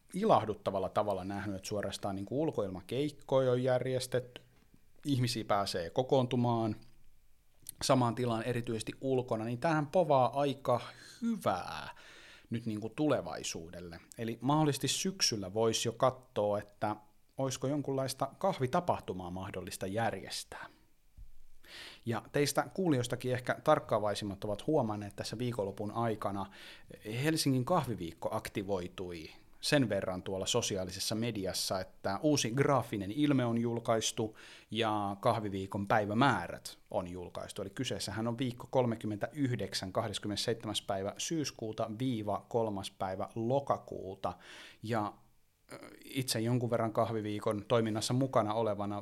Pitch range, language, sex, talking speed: 100-130 Hz, Finnish, male, 105 wpm